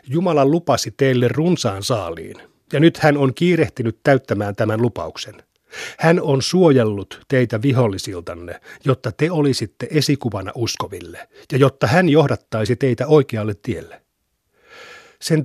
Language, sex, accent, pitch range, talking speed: Finnish, male, native, 110-140 Hz, 120 wpm